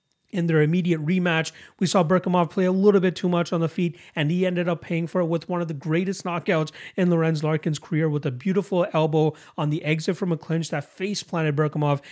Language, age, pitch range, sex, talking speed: English, 30-49, 150-185 Hz, male, 235 wpm